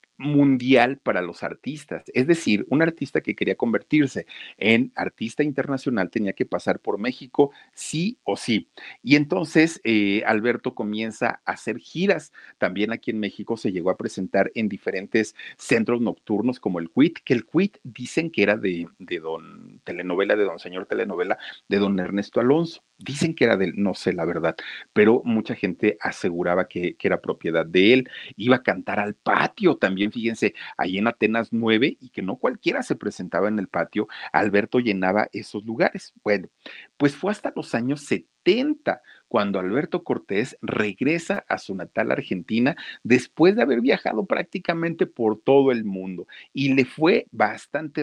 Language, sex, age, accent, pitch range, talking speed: Spanish, male, 50-69, Mexican, 105-145 Hz, 165 wpm